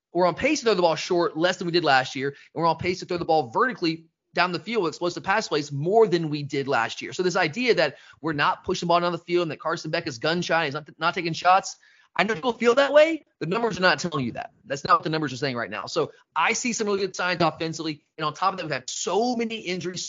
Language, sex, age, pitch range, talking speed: English, male, 30-49, 155-195 Hz, 300 wpm